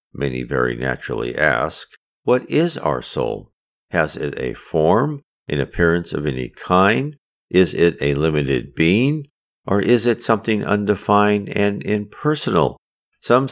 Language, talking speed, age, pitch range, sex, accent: English, 135 wpm, 50-69, 70-110 Hz, male, American